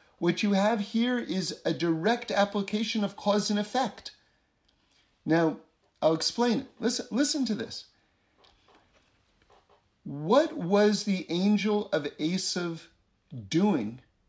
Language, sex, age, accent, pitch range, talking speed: English, male, 50-69, American, 155-235 Hz, 115 wpm